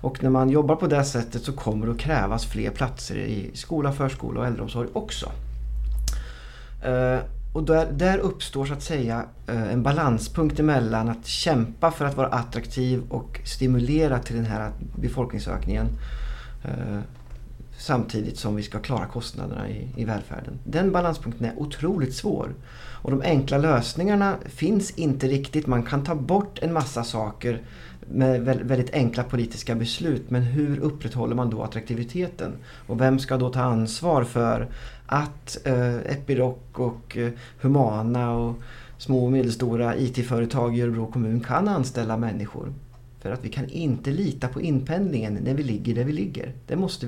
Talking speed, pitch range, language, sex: 155 wpm, 115-140 Hz, English, male